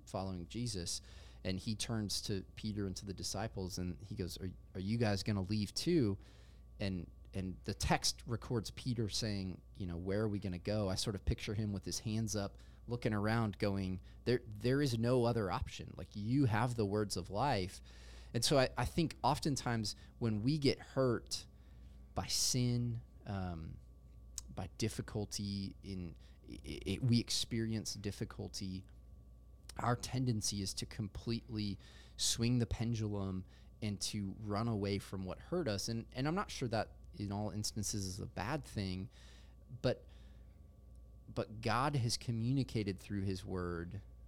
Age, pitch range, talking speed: 20-39, 90-115 Hz, 165 wpm